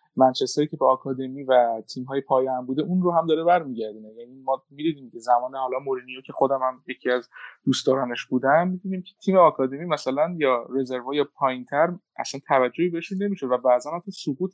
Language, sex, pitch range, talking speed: Persian, male, 130-180 Hz, 195 wpm